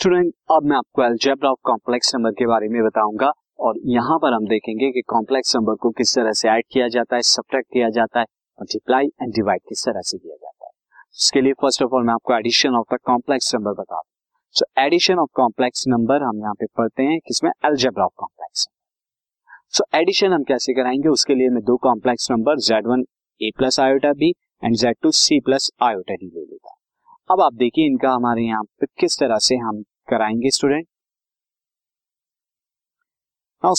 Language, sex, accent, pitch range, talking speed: Hindi, male, native, 120-150 Hz, 95 wpm